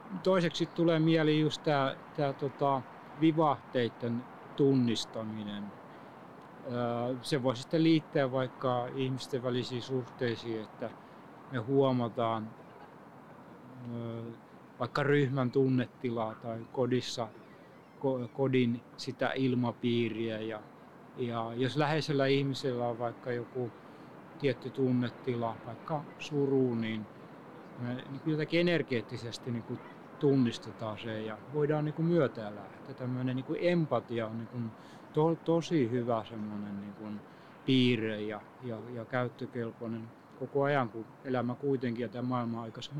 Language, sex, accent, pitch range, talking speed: Finnish, male, native, 115-140 Hz, 90 wpm